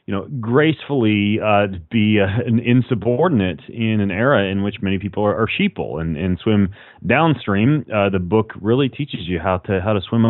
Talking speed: 190 wpm